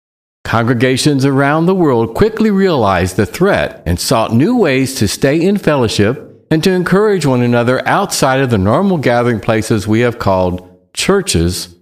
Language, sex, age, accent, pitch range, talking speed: English, male, 60-79, American, 95-140 Hz, 155 wpm